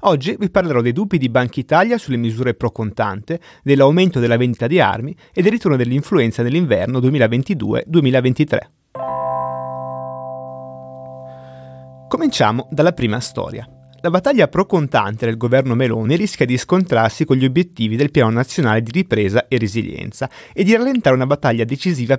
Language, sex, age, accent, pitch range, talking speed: Italian, male, 30-49, native, 115-165 Hz, 140 wpm